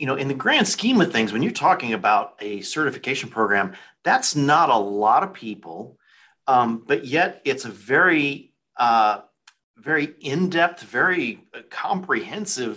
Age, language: 40-59, English